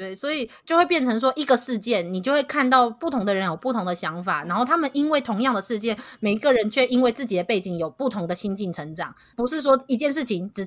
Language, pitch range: Chinese, 180-255 Hz